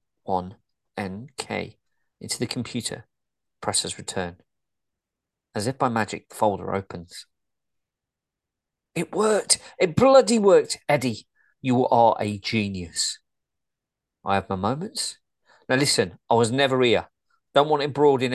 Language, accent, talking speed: English, British, 125 wpm